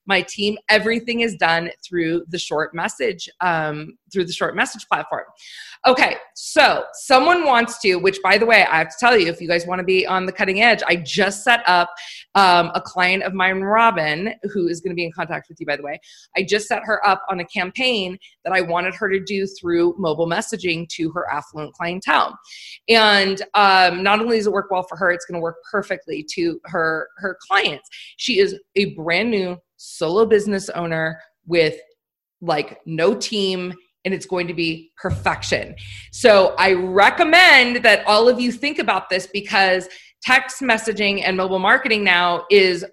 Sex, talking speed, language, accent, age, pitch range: female, 190 wpm, English, American, 20-39, 170-220 Hz